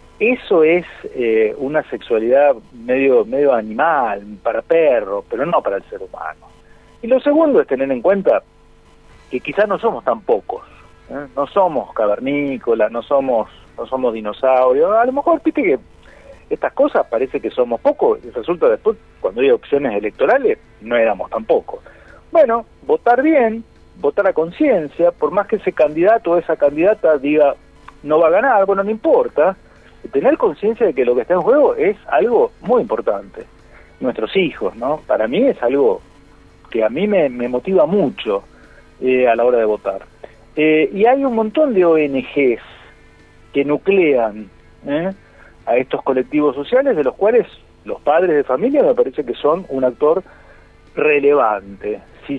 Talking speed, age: 165 wpm, 40-59